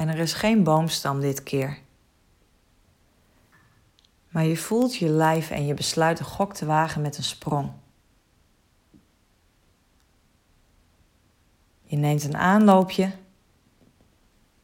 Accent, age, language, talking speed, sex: Dutch, 30-49, Dutch, 105 wpm, female